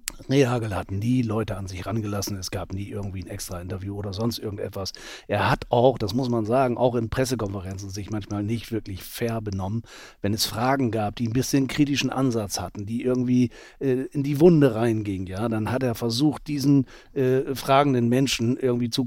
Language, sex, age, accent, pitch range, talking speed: German, male, 40-59, German, 110-135 Hz, 190 wpm